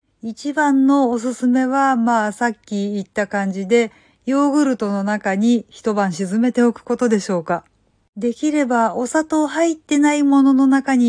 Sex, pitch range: female, 210-255 Hz